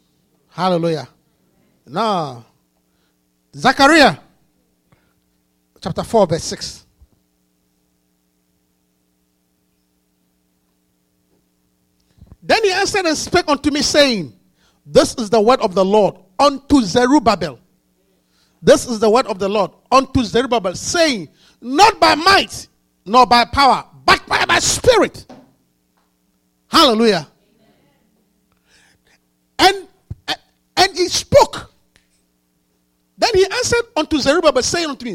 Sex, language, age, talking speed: male, English, 50-69, 95 wpm